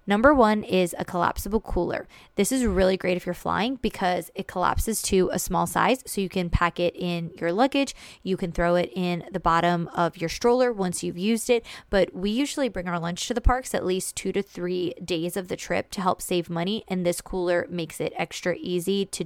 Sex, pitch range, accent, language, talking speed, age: female, 180-225 Hz, American, English, 225 wpm, 20-39